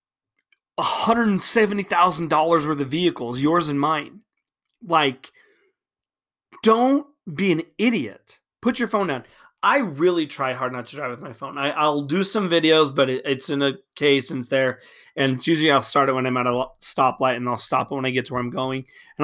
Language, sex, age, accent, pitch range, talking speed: English, male, 30-49, American, 135-175 Hz, 185 wpm